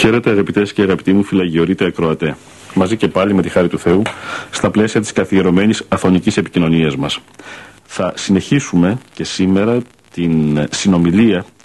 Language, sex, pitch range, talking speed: Greek, male, 90-115 Hz, 140 wpm